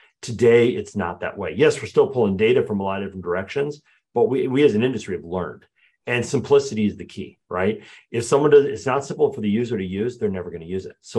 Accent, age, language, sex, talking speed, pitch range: American, 40-59, English, male, 255 wpm, 100-140 Hz